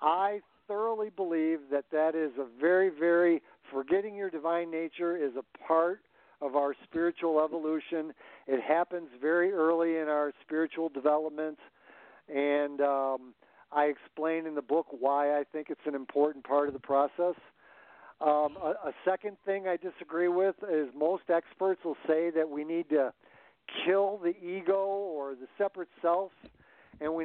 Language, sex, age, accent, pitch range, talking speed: English, male, 50-69, American, 150-185 Hz, 155 wpm